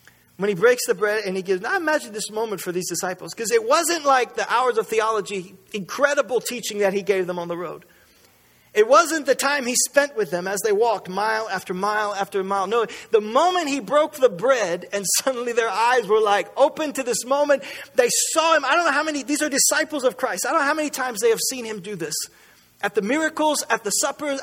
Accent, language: American, English